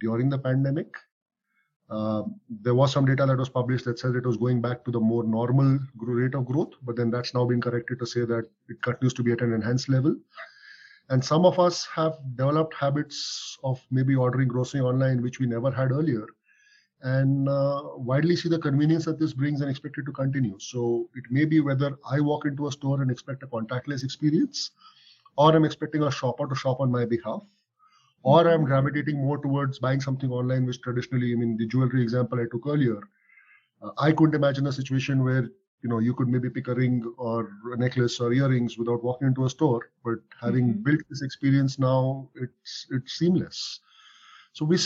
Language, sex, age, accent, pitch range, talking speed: English, male, 30-49, Indian, 125-150 Hz, 200 wpm